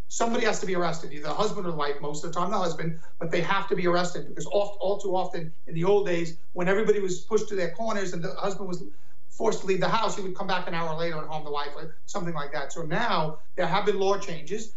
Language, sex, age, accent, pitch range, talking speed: English, male, 40-59, American, 170-205 Hz, 285 wpm